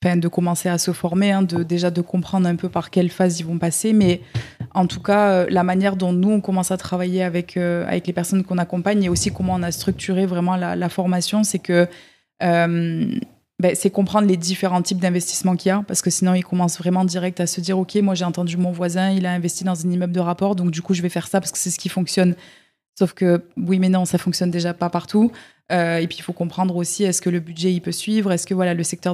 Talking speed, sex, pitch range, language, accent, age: 260 wpm, female, 175-190 Hz, French, French, 20-39